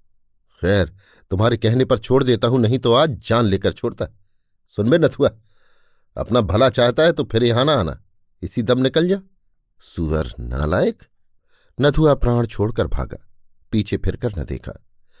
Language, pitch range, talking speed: Hindi, 90-125 Hz, 160 wpm